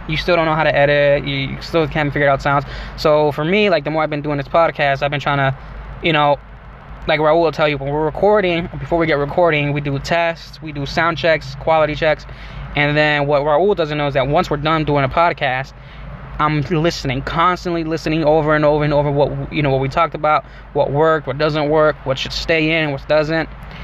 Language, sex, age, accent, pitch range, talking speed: English, male, 10-29, American, 145-160 Hz, 230 wpm